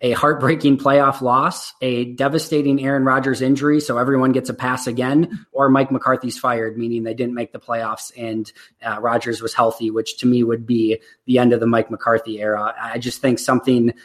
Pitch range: 120-135 Hz